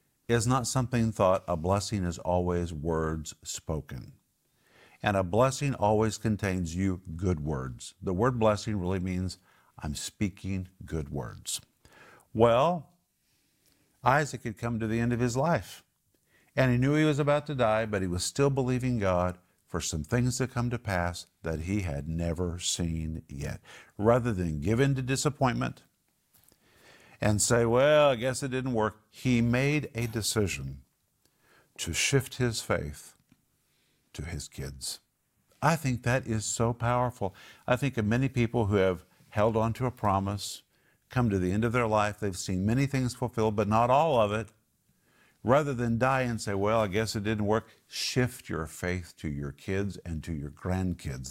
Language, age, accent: English, 50-69, American